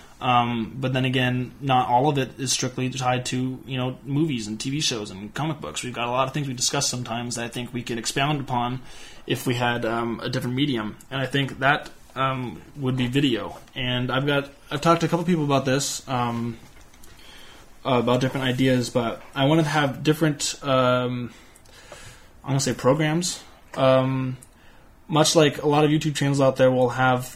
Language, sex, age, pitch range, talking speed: English, male, 20-39, 125-140 Hz, 200 wpm